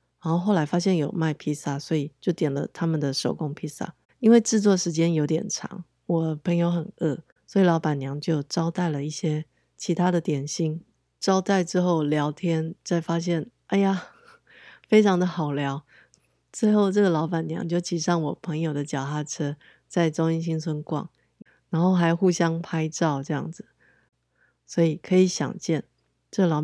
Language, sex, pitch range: Chinese, female, 150-185 Hz